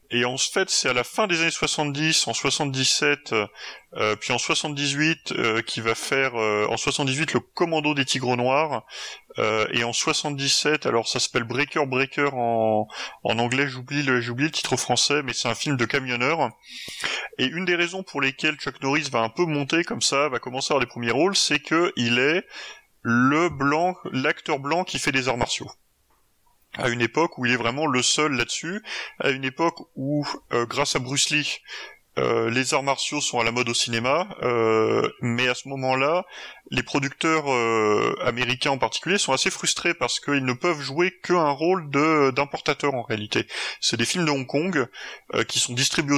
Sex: male